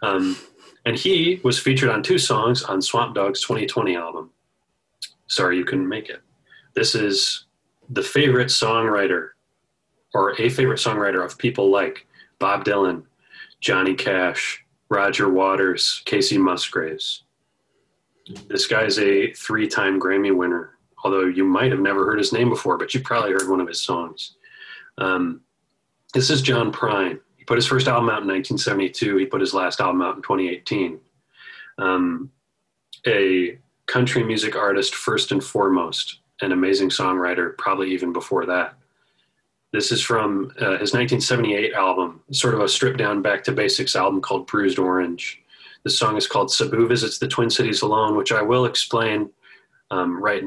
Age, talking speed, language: 30-49, 155 wpm, English